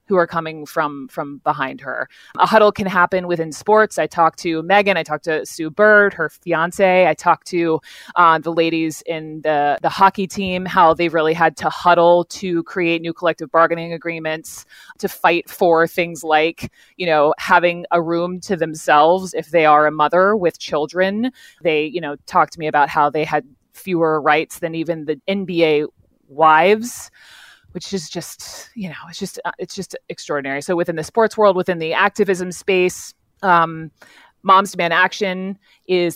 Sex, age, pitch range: female, 30-49, 155-180 Hz